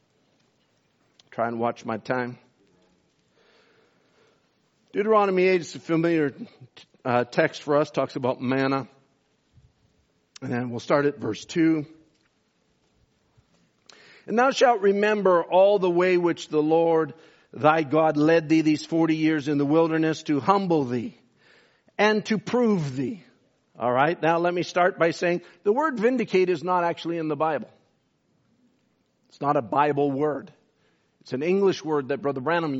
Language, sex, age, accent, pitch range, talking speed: English, male, 50-69, American, 150-180 Hz, 145 wpm